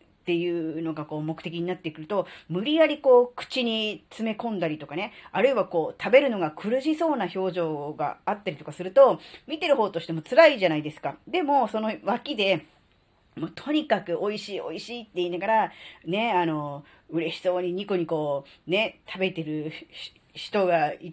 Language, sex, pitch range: Japanese, female, 160-250 Hz